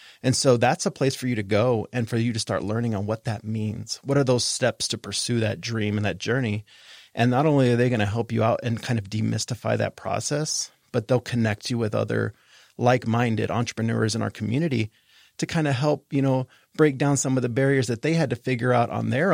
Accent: American